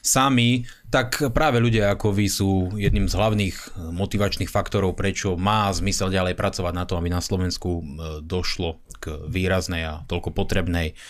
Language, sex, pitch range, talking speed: Slovak, male, 95-110 Hz, 150 wpm